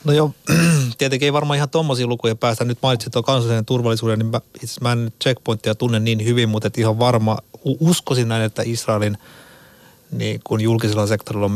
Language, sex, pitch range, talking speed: Finnish, male, 110-120 Hz, 180 wpm